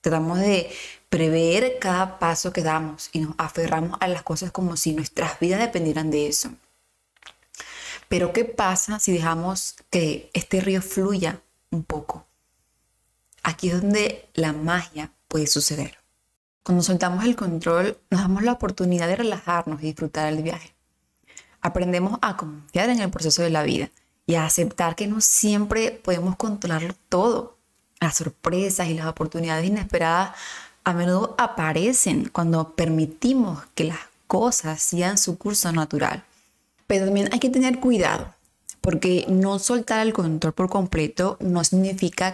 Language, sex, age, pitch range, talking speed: Spanish, female, 20-39, 160-200 Hz, 145 wpm